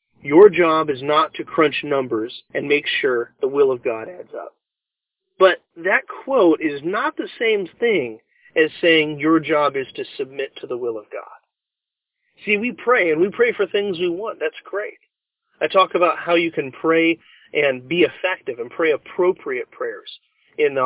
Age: 40-59